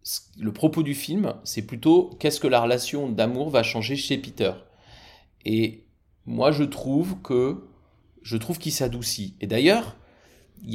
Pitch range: 110-145 Hz